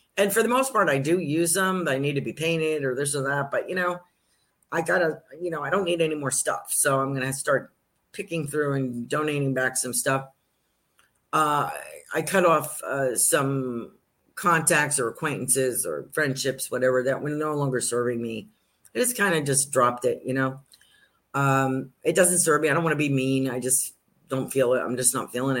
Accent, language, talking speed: American, English, 215 wpm